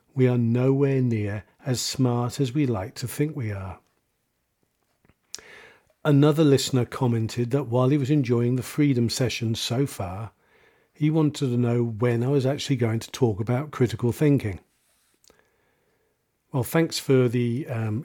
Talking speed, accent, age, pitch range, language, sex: 150 wpm, British, 50-69, 115-140 Hz, English, male